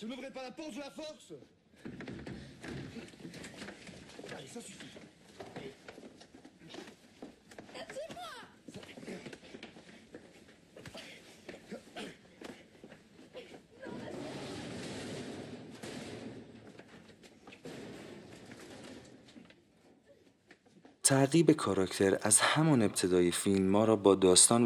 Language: Persian